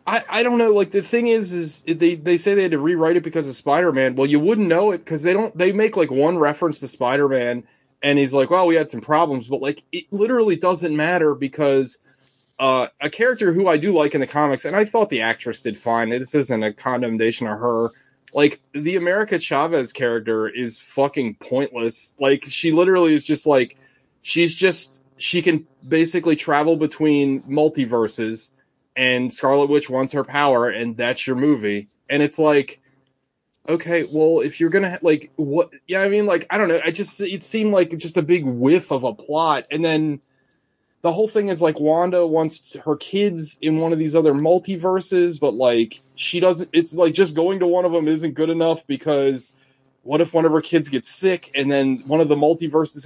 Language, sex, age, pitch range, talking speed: English, male, 30-49, 135-175 Hz, 205 wpm